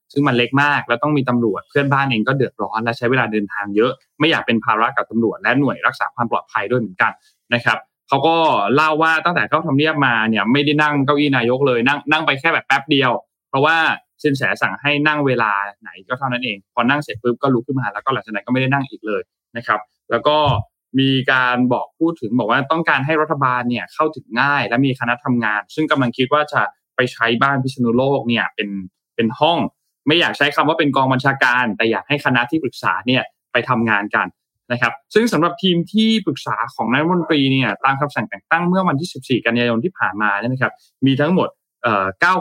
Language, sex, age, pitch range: Thai, male, 20-39, 115-150 Hz